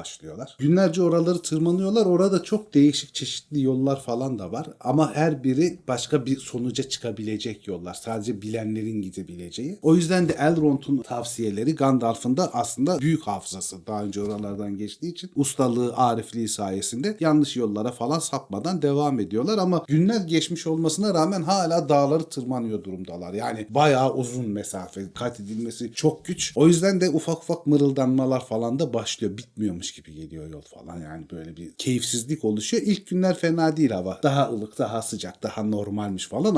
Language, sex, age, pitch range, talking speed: Turkish, male, 40-59, 105-150 Hz, 155 wpm